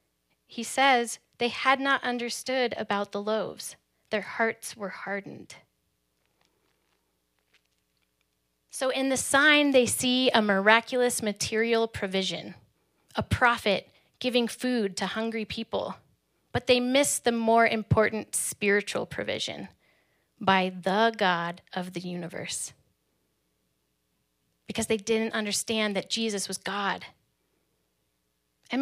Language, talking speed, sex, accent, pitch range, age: English, 110 wpm, female, American, 185-245 Hz, 10-29